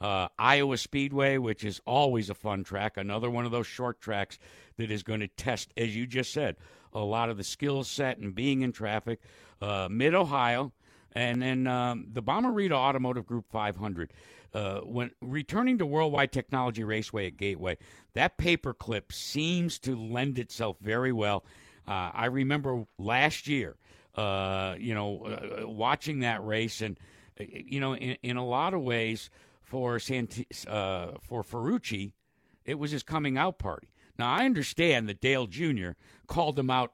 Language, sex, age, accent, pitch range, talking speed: English, male, 60-79, American, 100-130 Hz, 165 wpm